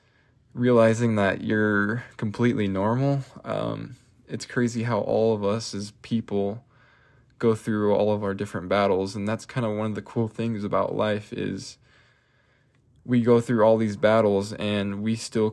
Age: 10-29